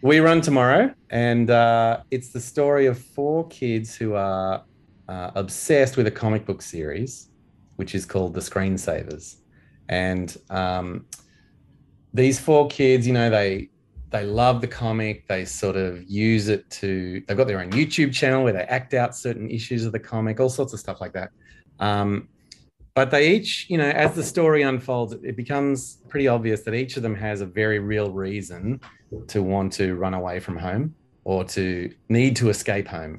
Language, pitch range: English, 95-125 Hz